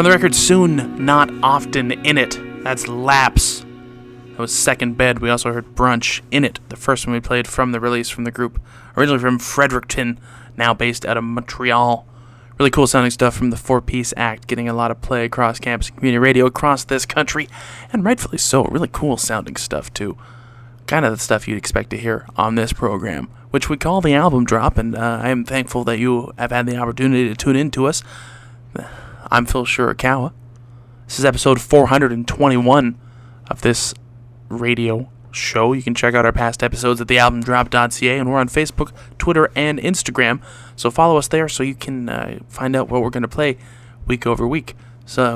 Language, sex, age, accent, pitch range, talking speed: English, male, 20-39, American, 120-135 Hz, 195 wpm